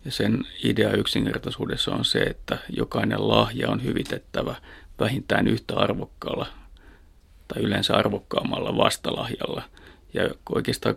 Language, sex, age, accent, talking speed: Finnish, male, 30-49, native, 110 wpm